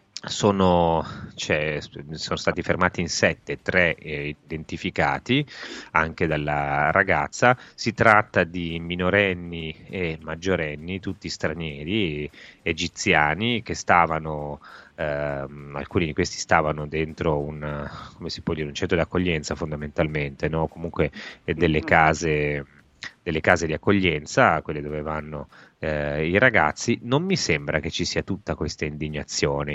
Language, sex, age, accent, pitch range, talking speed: Italian, male, 30-49, native, 75-90 Hz, 125 wpm